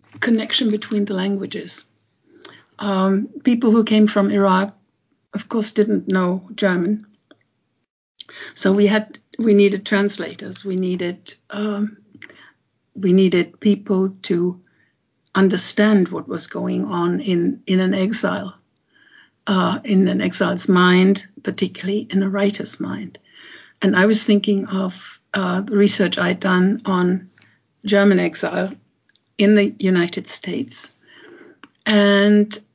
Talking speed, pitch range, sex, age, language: 115 wpm, 190-210 Hz, female, 60-79, English